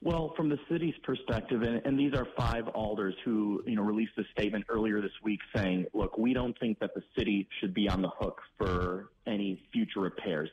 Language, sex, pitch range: English, male, 95-120 Hz